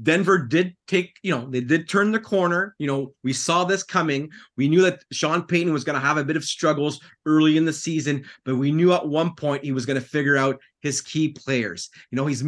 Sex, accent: male, American